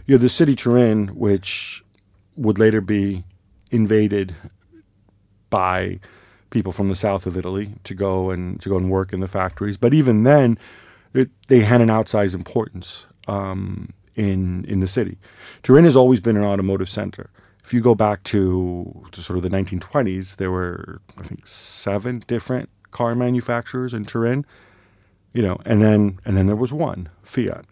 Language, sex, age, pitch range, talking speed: English, male, 40-59, 95-115 Hz, 170 wpm